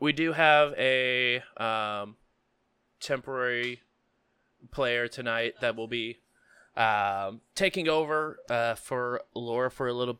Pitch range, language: 115-140 Hz, English